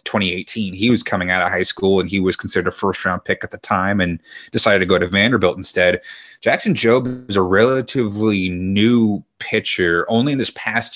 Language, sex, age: English, male, 30-49